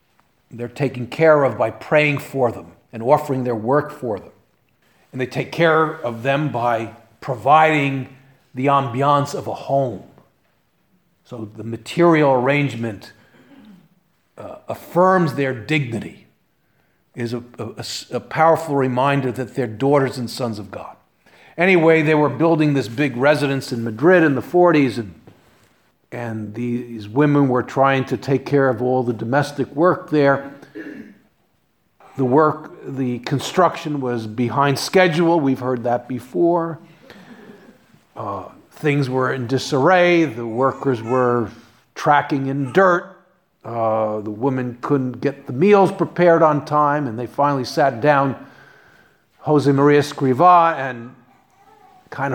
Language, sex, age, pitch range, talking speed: English, male, 50-69, 125-155 Hz, 135 wpm